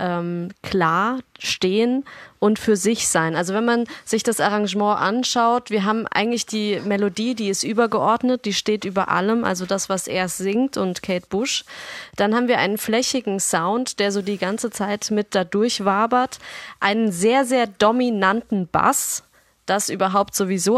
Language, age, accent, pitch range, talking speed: German, 20-39, German, 195-235 Hz, 160 wpm